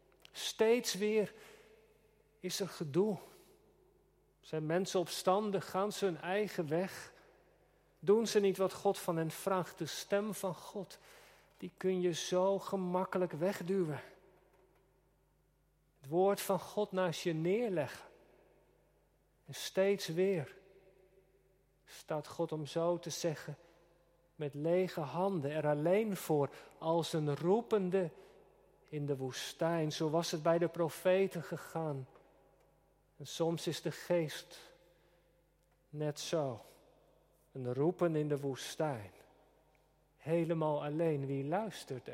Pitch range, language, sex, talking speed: 165-195 Hz, Dutch, male, 115 wpm